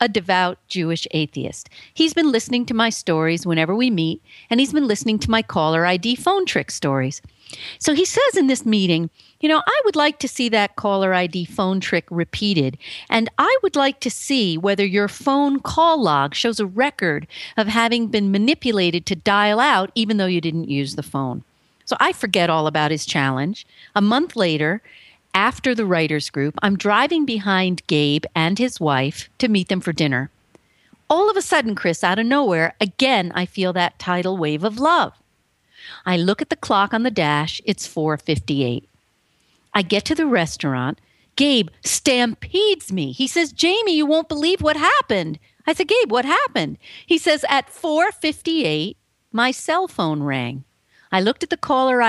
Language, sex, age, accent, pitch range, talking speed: English, female, 50-69, American, 165-270 Hz, 180 wpm